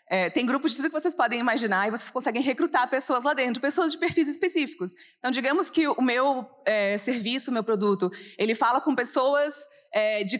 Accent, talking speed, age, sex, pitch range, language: Brazilian, 190 wpm, 20-39, female, 215-285 Hz, Portuguese